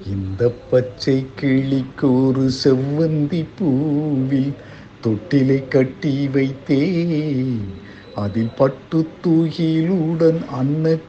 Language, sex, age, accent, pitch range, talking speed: Tamil, male, 60-79, native, 135-205 Hz, 65 wpm